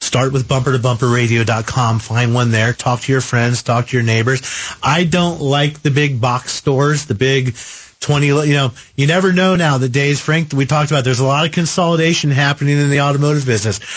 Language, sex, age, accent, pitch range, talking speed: English, male, 40-59, American, 130-165 Hz, 200 wpm